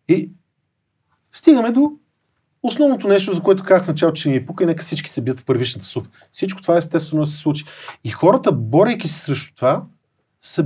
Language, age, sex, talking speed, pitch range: Bulgarian, 40-59, male, 205 wpm, 135-185 Hz